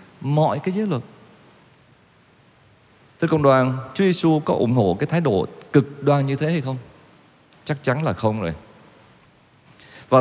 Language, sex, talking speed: Vietnamese, male, 165 wpm